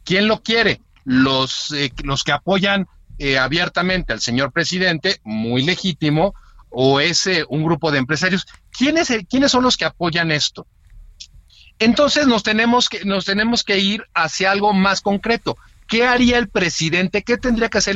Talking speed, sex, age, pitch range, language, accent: 165 wpm, male, 50-69, 160-215 Hz, Spanish, Mexican